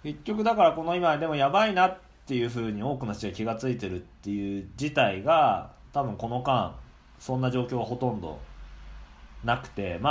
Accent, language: native, Japanese